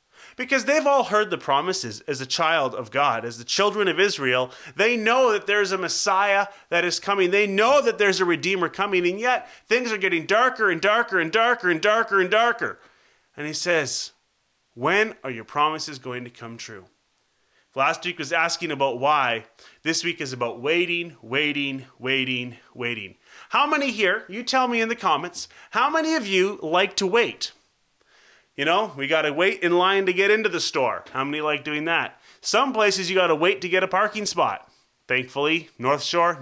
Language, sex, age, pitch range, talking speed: English, male, 30-49, 150-210 Hz, 200 wpm